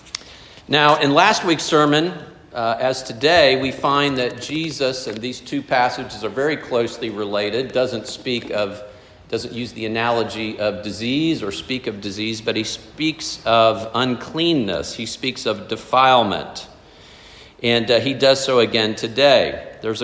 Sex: male